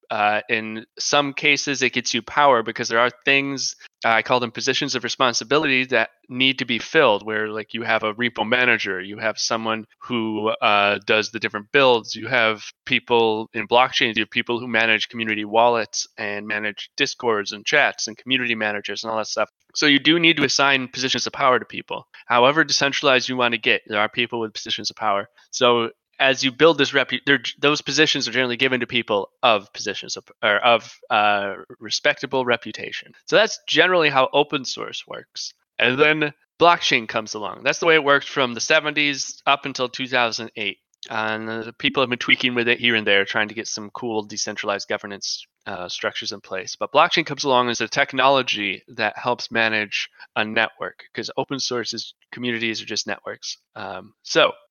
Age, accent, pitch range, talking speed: 20-39, American, 110-135 Hz, 195 wpm